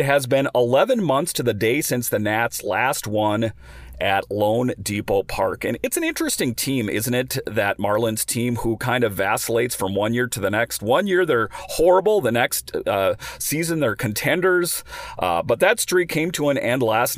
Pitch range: 100-125 Hz